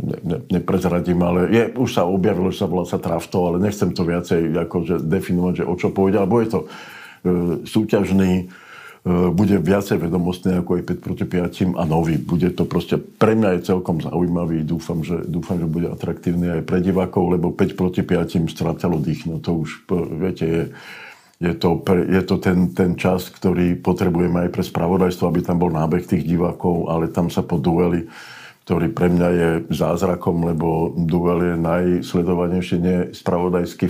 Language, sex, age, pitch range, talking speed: Slovak, male, 50-69, 85-90 Hz, 175 wpm